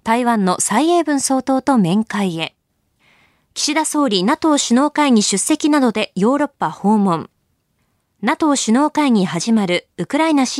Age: 20-39